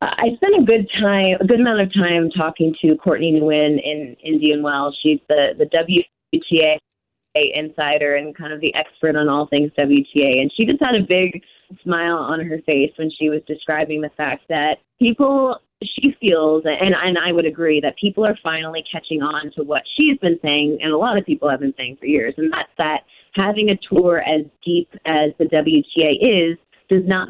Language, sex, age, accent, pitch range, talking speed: English, female, 20-39, American, 155-190 Hz, 200 wpm